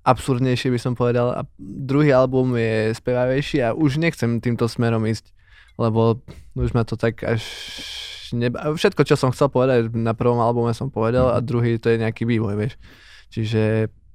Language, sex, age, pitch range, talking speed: Slovak, male, 20-39, 115-125 Hz, 170 wpm